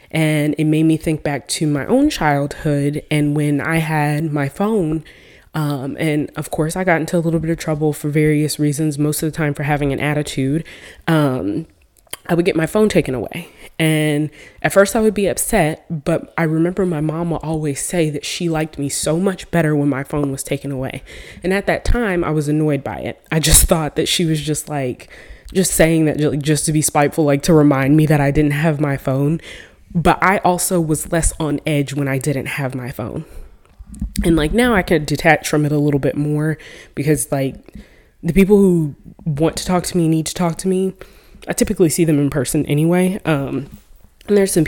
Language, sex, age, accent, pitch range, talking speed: English, female, 20-39, American, 145-170 Hz, 215 wpm